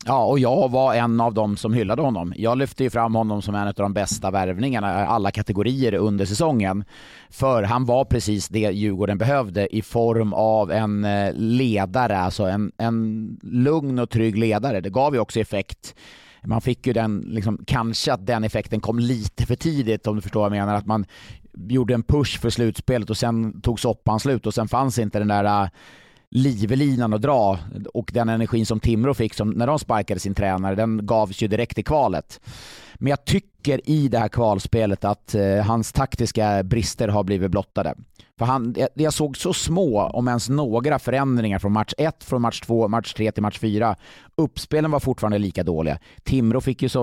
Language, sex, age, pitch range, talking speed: Swedish, male, 30-49, 105-125 Hz, 195 wpm